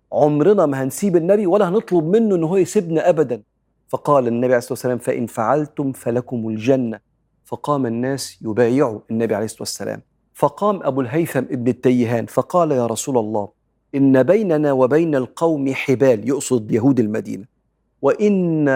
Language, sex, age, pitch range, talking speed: Arabic, male, 40-59, 120-155 Hz, 140 wpm